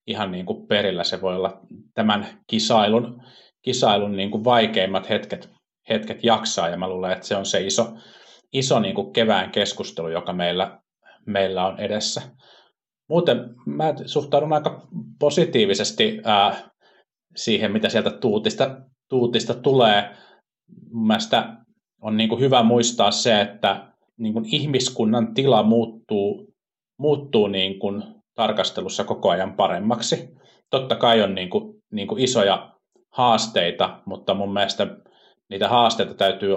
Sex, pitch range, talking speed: male, 100-130 Hz, 125 wpm